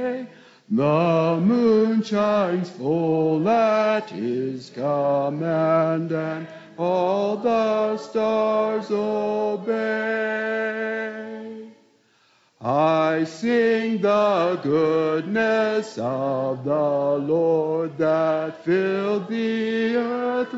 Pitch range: 165-245 Hz